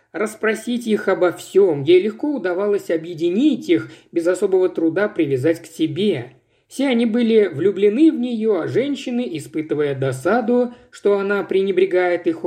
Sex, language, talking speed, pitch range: male, Russian, 140 wpm, 160-235 Hz